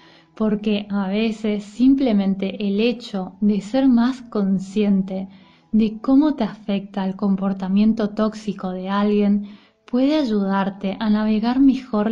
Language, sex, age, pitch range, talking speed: Spanish, female, 20-39, 195-220 Hz, 120 wpm